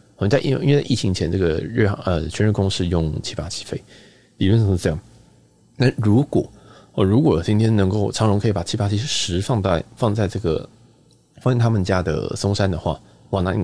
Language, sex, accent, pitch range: Chinese, male, native, 90-115 Hz